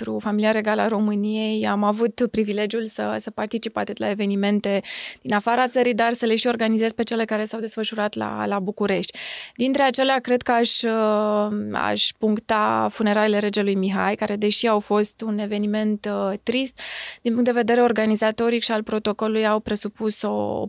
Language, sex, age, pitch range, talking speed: Romanian, female, 20-39, 205-230 Hz, 160 wpm